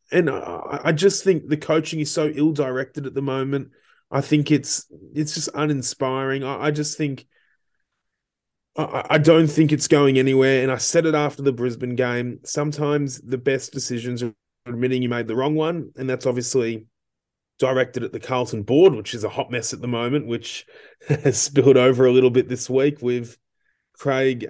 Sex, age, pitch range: male, 20-39, 125-150 Hz